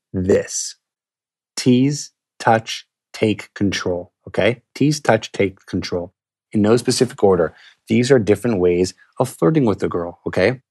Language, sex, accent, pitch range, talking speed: English, male, American, 90-120 Hz, 135 wpm